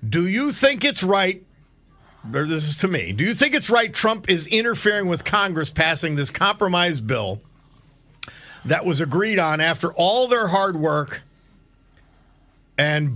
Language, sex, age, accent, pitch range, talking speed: English, male, 50-69, American, 140-185 Hz, 155 wpm